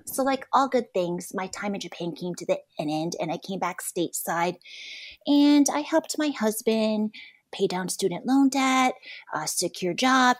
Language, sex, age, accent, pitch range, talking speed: English, female, 30-49, American, 170-245 Hz, 175 wpm